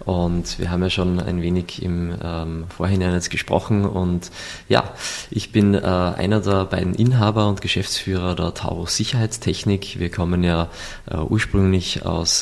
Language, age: German, 20-39